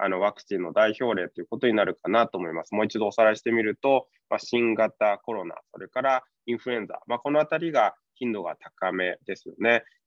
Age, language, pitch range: 20-39, Japanese, 105-135 Hz